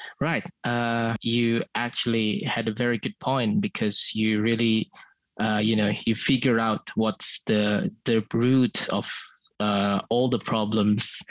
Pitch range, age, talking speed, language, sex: 105-115 Hz, 20-39, 145 wpm, Indonesian, male